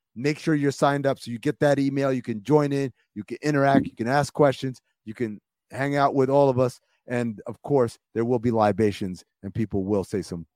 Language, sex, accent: English, male, American